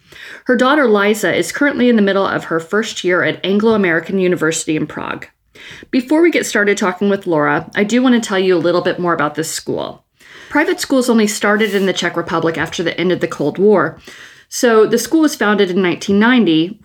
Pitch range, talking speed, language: 170-215 Hz, 210 wpm, English